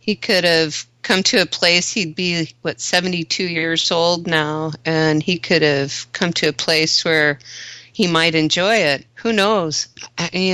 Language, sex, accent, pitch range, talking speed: English, female, American, 160-205 Hz, 170 wpm